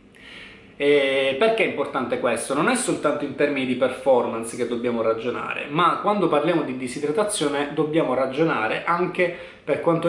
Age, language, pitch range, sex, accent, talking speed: 20-39, Italian, 125-155 Hz, male, native, 145 wpm